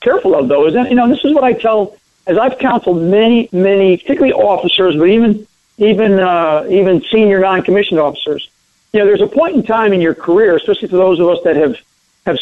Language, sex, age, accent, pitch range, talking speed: English, male, 60-79, American, 175-250 Hz, 220 wpm